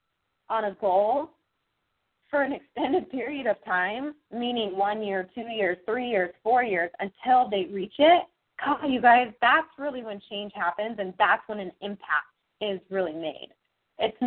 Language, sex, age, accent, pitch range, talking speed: English, female, 20-39, American, 195-245 Hz, 165 wpm